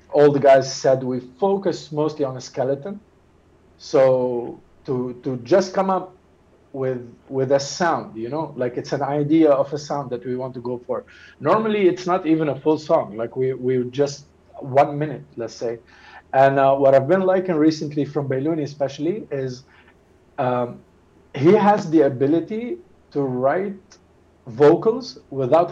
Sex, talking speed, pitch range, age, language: male, 165 wpm, 130-160 Hz, 50-69, Arabic